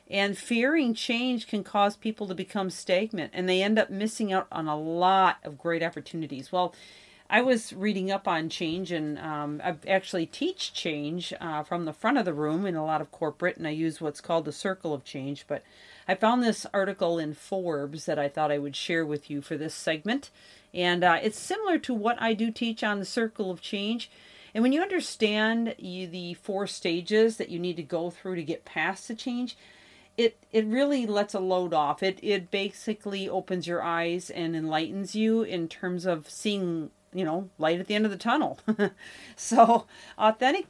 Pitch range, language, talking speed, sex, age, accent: 165-220 Hz, English, 200 wpm, female, 40-59, American